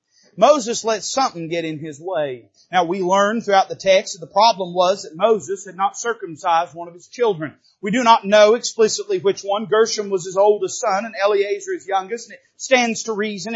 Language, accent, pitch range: English, American, 170-230 Hz